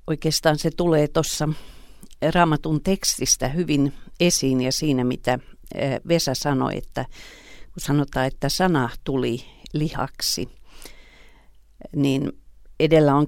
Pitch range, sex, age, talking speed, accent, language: 130-160 Hz, female, 50-69, 105 wpm, native, Finnish